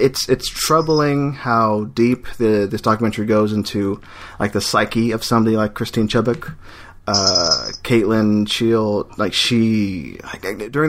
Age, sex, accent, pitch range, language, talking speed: 30-49, male, American, 105-125 Hz, English, 140 wpm